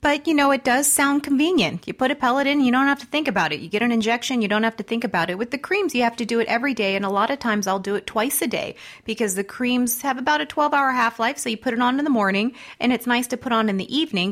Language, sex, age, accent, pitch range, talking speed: English, female, 30-49, American, 175-235 Hz, 320 wpm